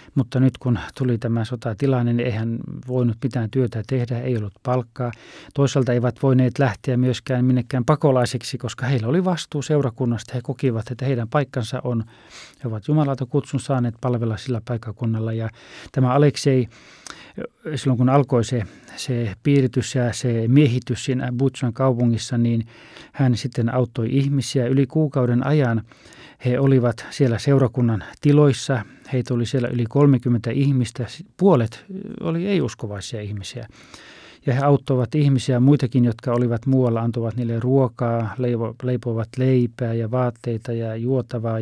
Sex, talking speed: male, 140 wpm